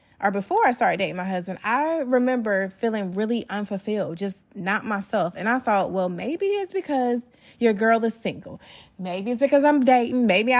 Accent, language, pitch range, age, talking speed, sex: American, English, 195-255 Hz, 20-39, 180 wpm, female